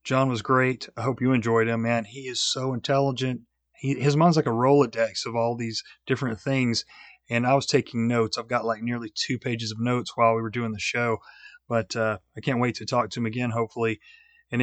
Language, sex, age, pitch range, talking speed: English, male, 30-49, 115-135 Hz, 220 wpm